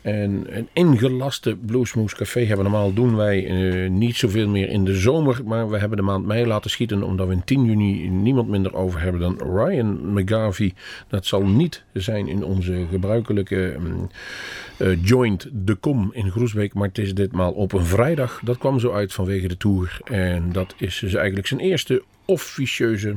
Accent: Dutch